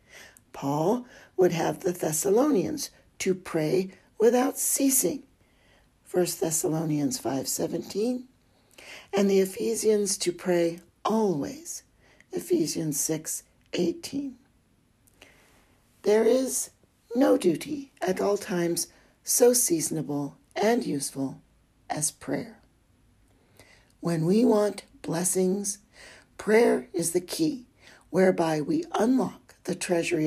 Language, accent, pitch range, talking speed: English, American, 160-220 Hz, 90 wpm